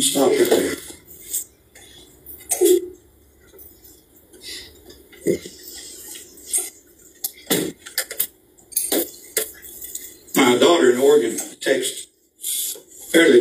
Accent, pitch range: American, 290-375 Hz